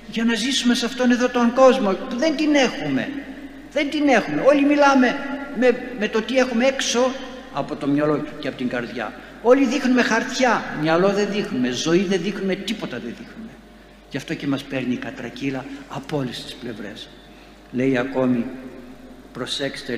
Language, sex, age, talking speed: Greek, male, 60-79, 170 wpm